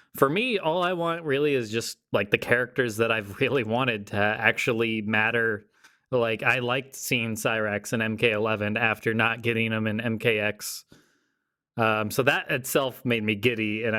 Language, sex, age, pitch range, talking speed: English, male, 20-39, 110-135 Hz, 165 wpm